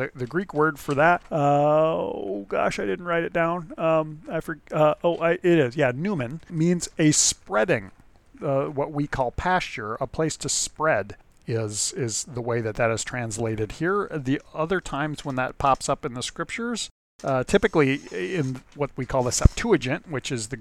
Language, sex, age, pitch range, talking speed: English, male, 40-59, 115-145 Hz, 190 wpm